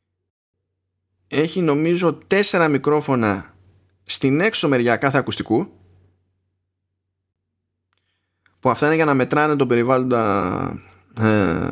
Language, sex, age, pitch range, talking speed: Greek, male, 20-39, 95-135 Hz, 90 wpm